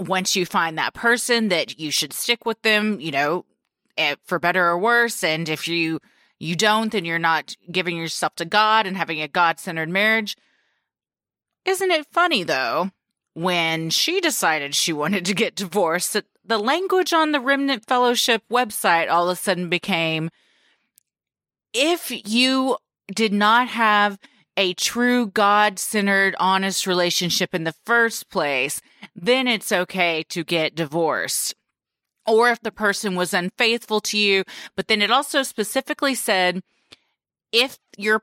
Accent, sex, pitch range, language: American, female, 175-230 Hz, English